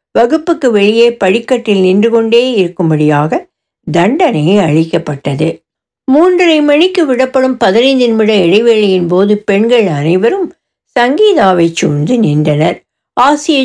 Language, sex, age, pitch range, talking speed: Tamil, female, 60-79, 185-265 Hz, 90 wpm